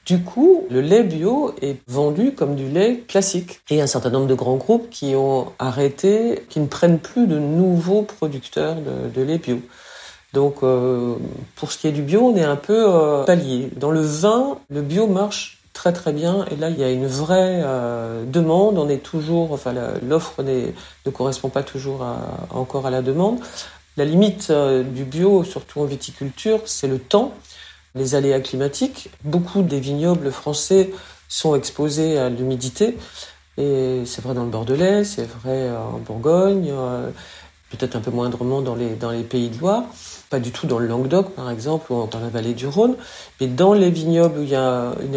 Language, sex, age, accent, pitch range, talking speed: French, female, 50-69, French, 130-175 Hz, 195 wpm